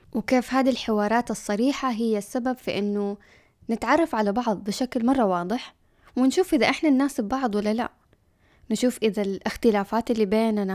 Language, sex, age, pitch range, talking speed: Arabic, female, 10-29, 190-230 Hz, 145 wpm